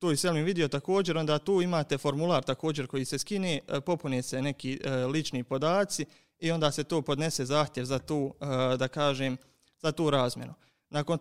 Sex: male